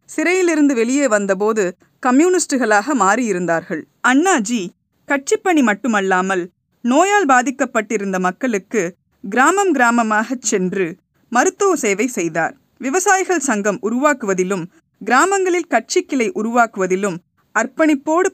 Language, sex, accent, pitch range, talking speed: Tamil, female, native, 200-295 Hz, 80 wpm